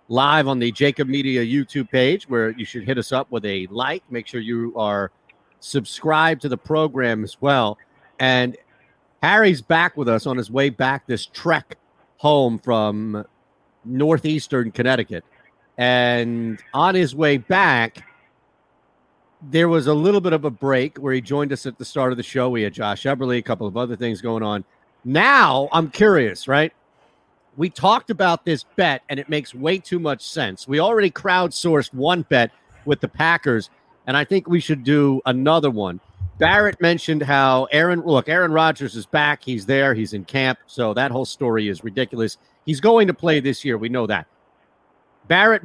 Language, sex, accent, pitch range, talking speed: English, male, American, 120-155 Hz, 180 wpm